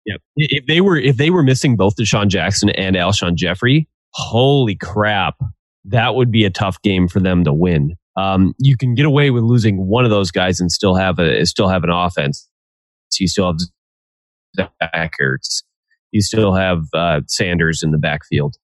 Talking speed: 185 wpm